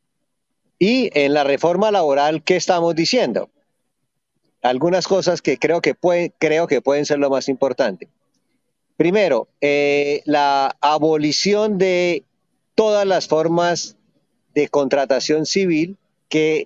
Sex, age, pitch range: male, 40-59, 135-175 Hz